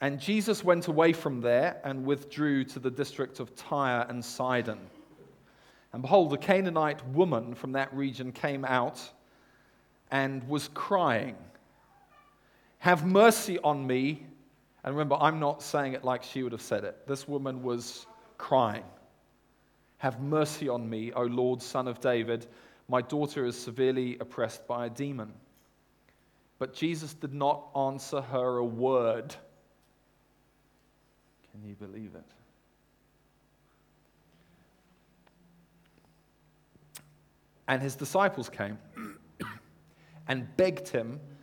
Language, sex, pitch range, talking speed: English, male, 125-150 Hz, 120 wpm